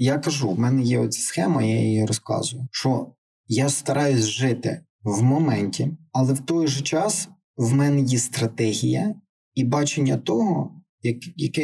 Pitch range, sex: 120-150 Hz, male